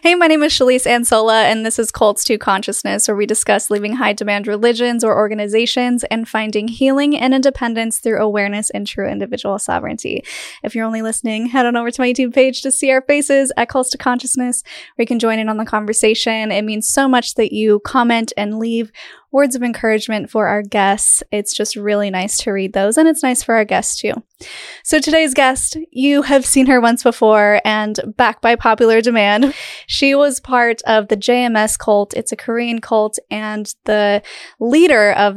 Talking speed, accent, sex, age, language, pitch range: 195 wpm, American, female, 10-29, English, 210-260 Hz